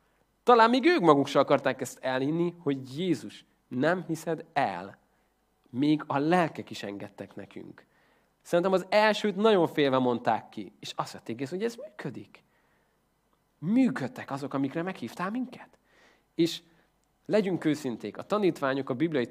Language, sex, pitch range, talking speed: Hungarian, male, 130-175 Hz, 135 wpm